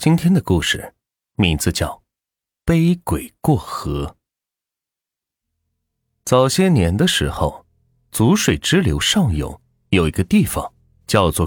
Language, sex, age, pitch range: Chinese, male, 30-49, 85-130 Hz